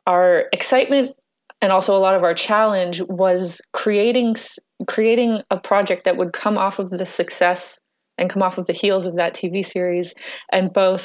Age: 30-49